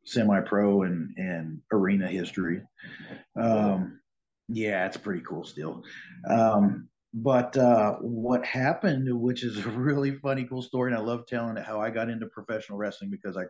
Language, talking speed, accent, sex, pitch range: English, 160 wpm, American, male, 100-120 Hz